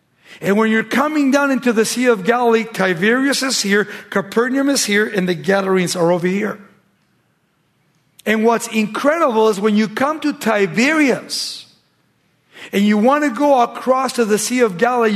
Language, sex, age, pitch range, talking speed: English, male, 50-69, 185-235 Hz, 165 wpm